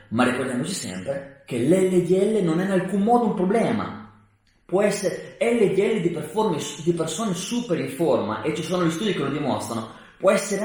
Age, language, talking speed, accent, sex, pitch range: 30-49, Italian, 175 wpm, native, male, 130-200 Hz